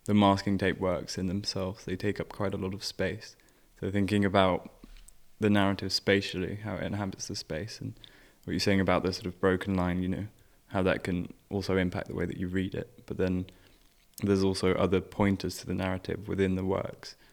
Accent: British